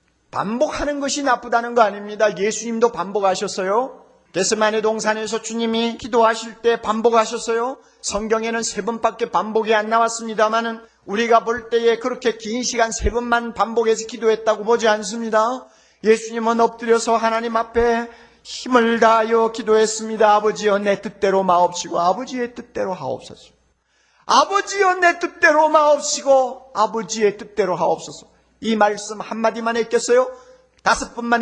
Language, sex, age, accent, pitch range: Korean, male, 40-59, native, 205-245 Hz